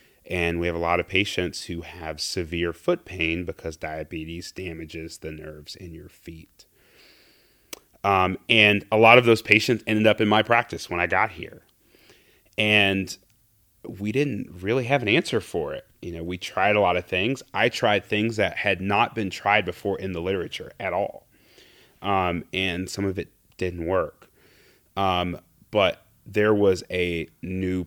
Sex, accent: male, American